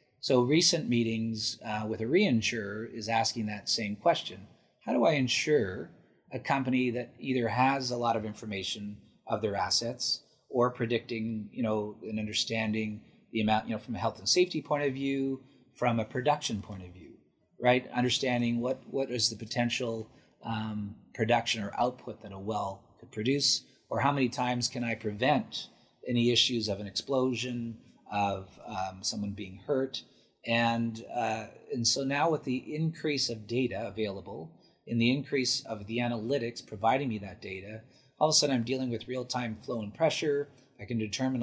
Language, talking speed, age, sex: English, 175 wpm, 30-49, male